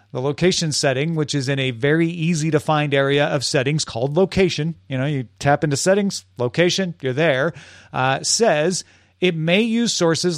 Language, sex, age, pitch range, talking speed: English, male, 40-59, 135-185 Hz, 170 wpm